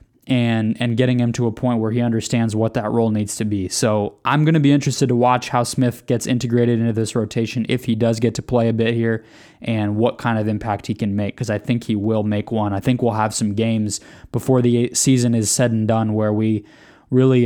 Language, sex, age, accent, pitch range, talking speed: English, male, 20-39, American, 110-130 Hz, 245 wpm